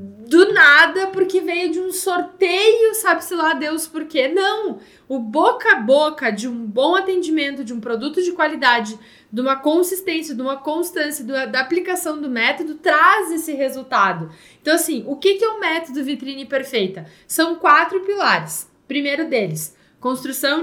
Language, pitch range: Portuguese, 260-335 Hz